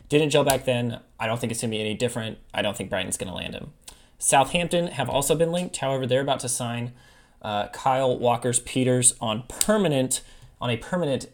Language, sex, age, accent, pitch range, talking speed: English, male, 20-39, American, 115-135 Hz, 205 wpm